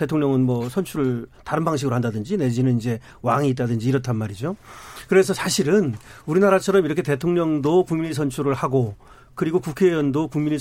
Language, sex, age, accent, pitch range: Korean, male, 40-59, native, 130-190 Hz